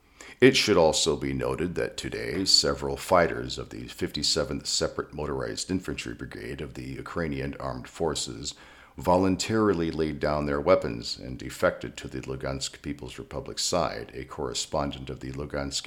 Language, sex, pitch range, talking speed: English, male, 65-90 Hz, 150 wpm